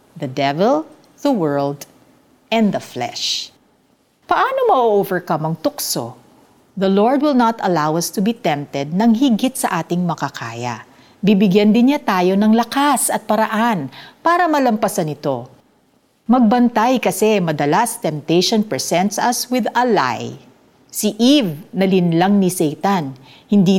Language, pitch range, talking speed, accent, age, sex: Filipino, 160-245 Hz, 130 wpm, native, 50-69, female